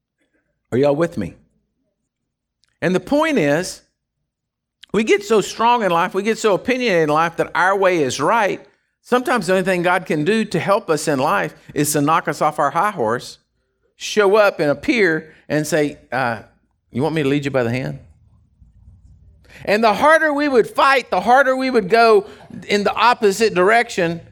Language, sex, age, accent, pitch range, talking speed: English, male, 50-69, American, 135-210 Hz, 190 wpm